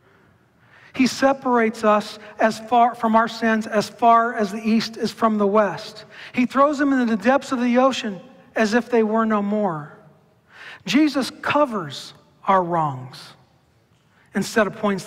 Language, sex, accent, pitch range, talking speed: English, male, American, 175-245 Hz, 155 wpm